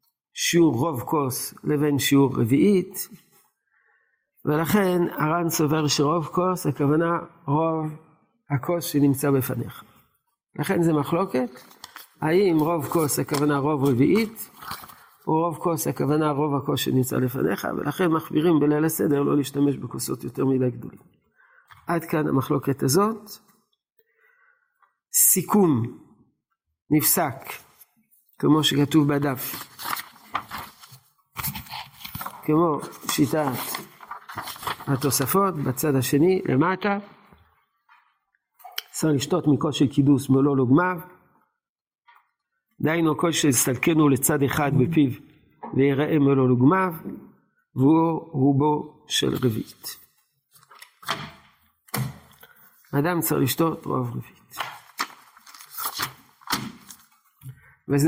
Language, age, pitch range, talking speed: Hebrew, 50-69, 140-170 Hz, 85 wpm